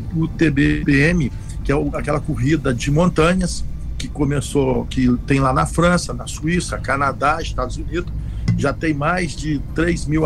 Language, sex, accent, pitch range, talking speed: Portuguese, male, Brazilian, 130-160 Hz, 150 wpm